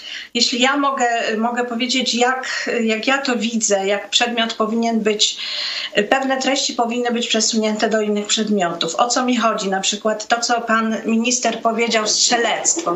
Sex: female